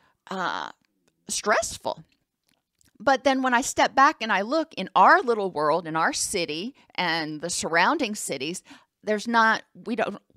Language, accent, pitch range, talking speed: English, American, 185-245 Hz, 150 wpm